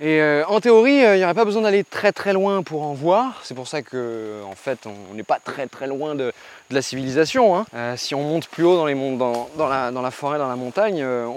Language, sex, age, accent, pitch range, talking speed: French, male, 20-39, French, 115-165 Hz, 280 wpm